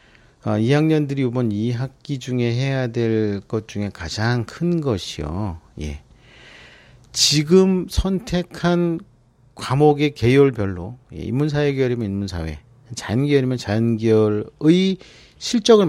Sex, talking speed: male, 90 wpm